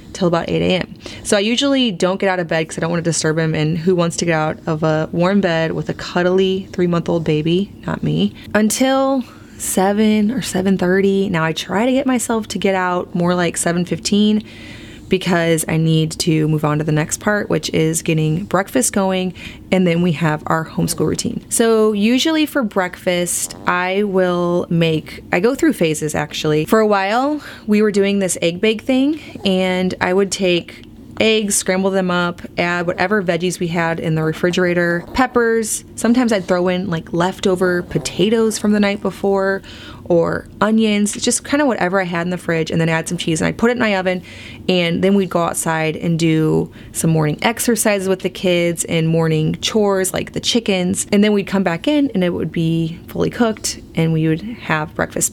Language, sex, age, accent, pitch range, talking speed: English, female, 20-39, American, 165-205 Hz, 200 wpm